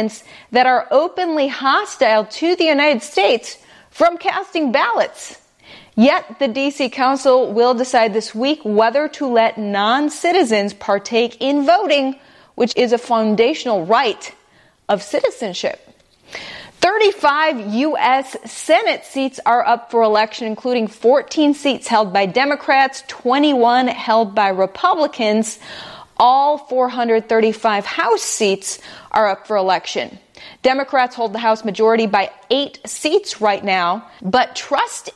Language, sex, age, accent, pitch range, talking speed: English, female, 30-49, American, 215-280 Hz, 120 wpm